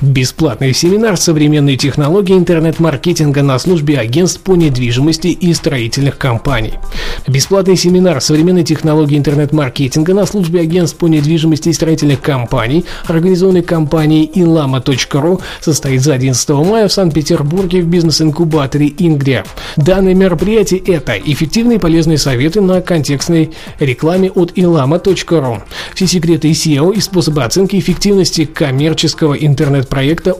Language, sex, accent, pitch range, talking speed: Russian, male, native, 145-175 Hz, 120 wpm